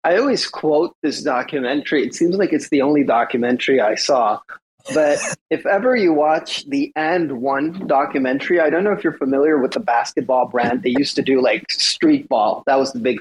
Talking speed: 200 wpm